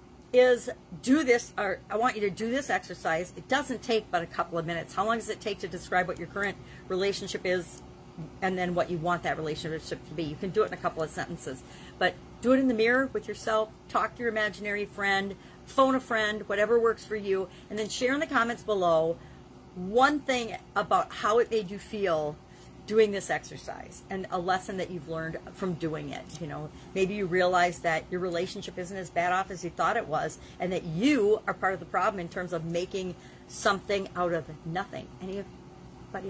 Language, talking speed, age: English, 215 wpm, 40-59